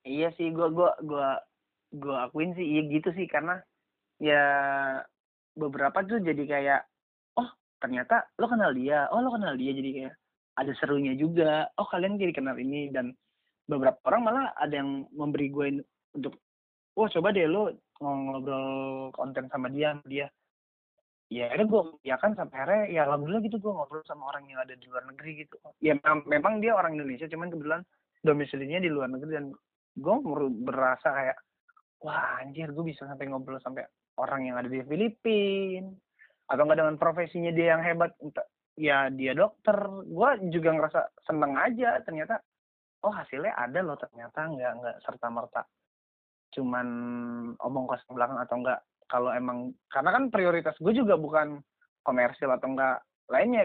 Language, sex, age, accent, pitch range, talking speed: Indonesian, male, 30-49, native, 135-180 Hz, 160 wpm